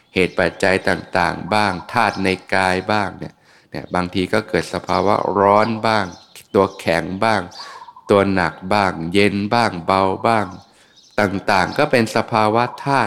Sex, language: male, Thai